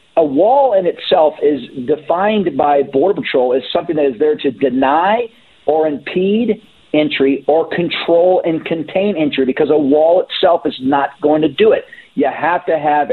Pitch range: 150-210 Hz